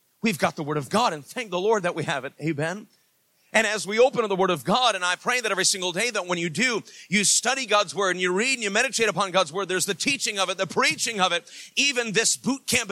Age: 40-59